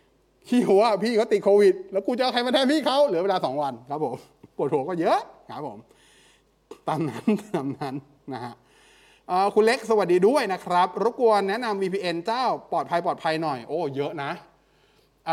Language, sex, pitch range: Thai, male, 150-205 Hz